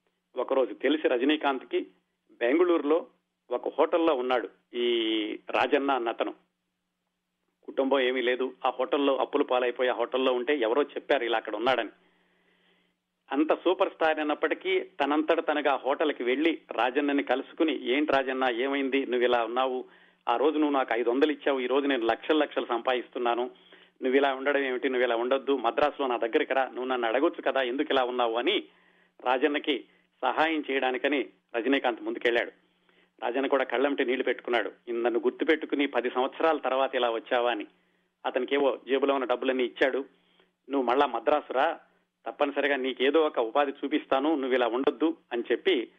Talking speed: 145 wpm